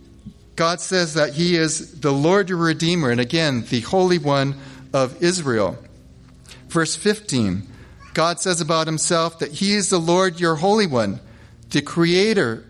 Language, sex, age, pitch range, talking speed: English, male, 40-59, 115-170 Hz, 150 wpm